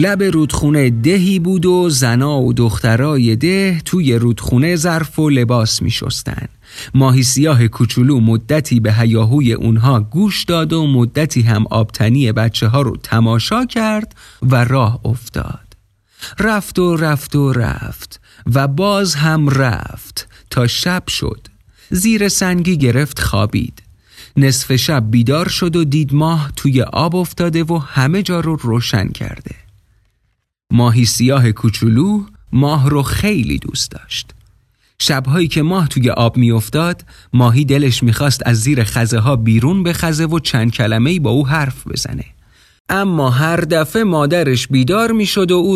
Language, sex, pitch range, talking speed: Persian, male, 115-165 Hz, 145 wpm